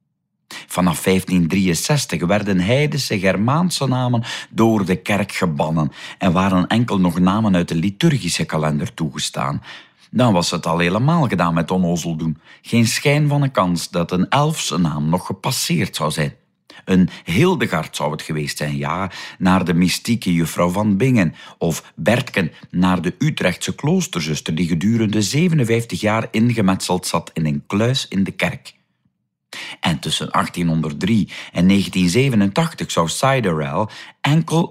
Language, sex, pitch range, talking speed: Dutch, male, 85-115 Hz, 140 wpm